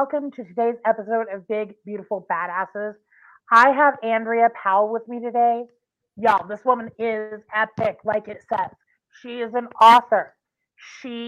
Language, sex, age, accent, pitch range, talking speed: English, female, 30-49, American, 195-250 Hz, 150 wpm